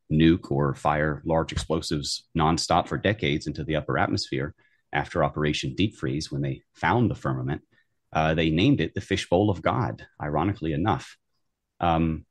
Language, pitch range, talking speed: English, 80-100 Hz, 155 wpm